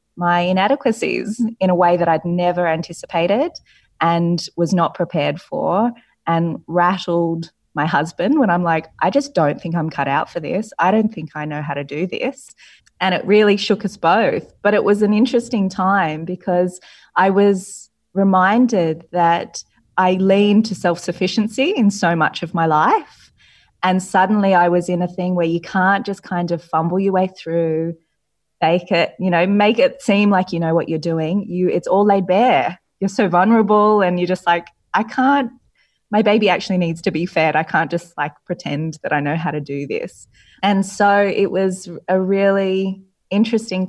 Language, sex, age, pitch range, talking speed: English, female, 20-39, 170-200 Hz, 185 wpm